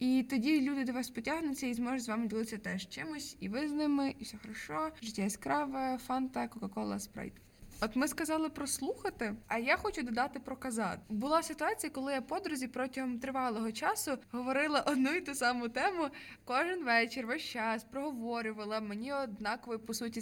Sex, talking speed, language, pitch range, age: female, 175 wpm, Ukrainian, 230-275 Hz, 20-39